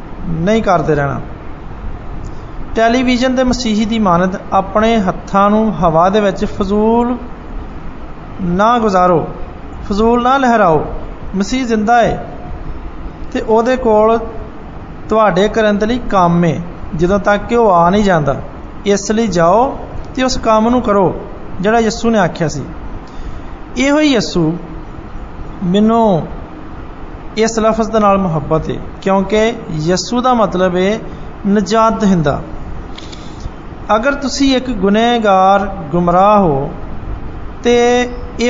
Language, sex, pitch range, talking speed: Hindi, male, 180-230 Hz, 85 wpm